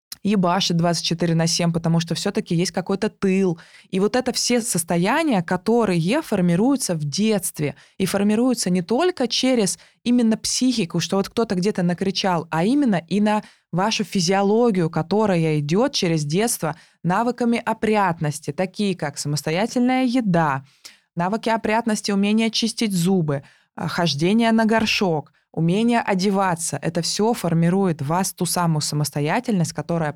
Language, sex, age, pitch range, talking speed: Russian, female, 20-39, 165-210 Hz, 130 wpm